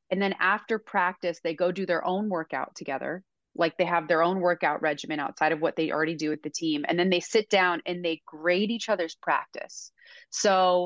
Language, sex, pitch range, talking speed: English, female, 170-200 Hz, 215 wpm